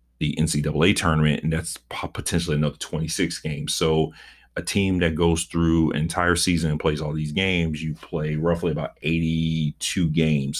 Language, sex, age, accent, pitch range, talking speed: English, male, 40-59, American, 75-85 Hz, 165 wpm